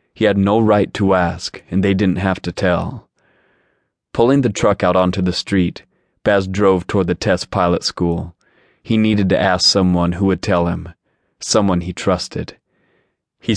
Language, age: English, 30-49